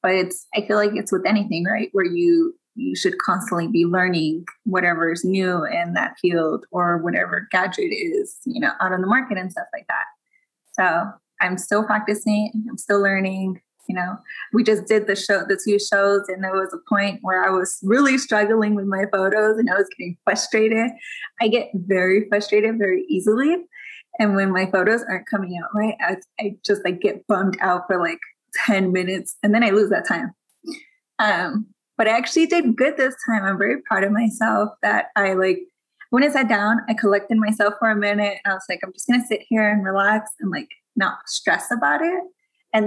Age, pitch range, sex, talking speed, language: 10-29, 190-255 Hz, female, 205 wpm, English